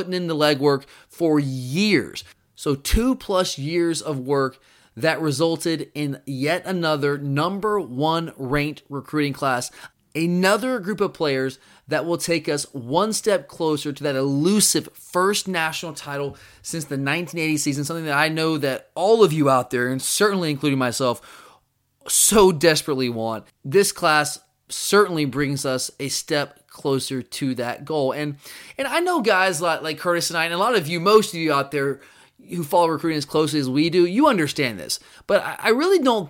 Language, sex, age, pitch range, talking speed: English, male, 20-39, 145-190 Hz, 175 wpm